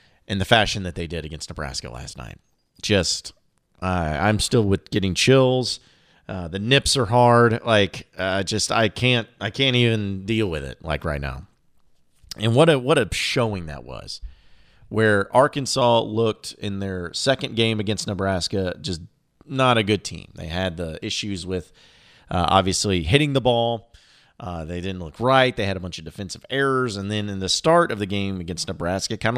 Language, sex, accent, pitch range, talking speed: English, male, American, 95-120 Hz, 190 wpm